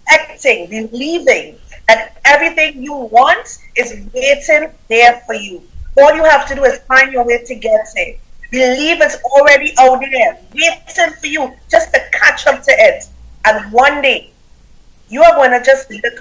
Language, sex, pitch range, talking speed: English, female, 250-320 Hz, 170 wpm